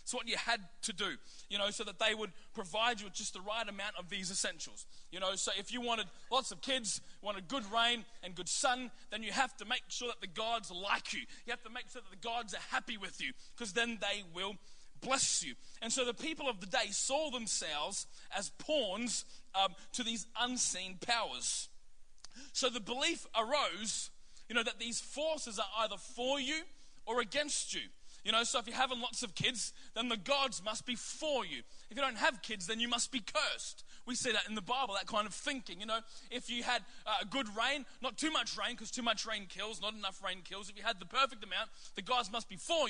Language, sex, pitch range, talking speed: English, male, 205-255 Hz, 230 wpm